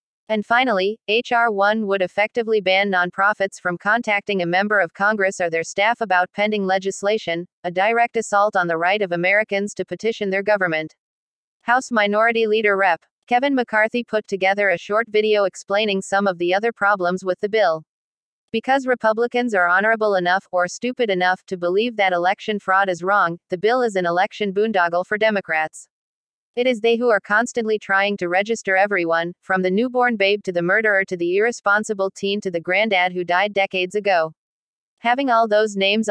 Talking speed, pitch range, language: 180 wpm, 185-215 Hz, English